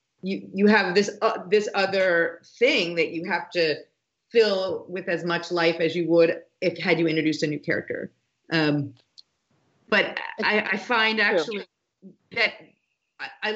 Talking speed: 155 wpm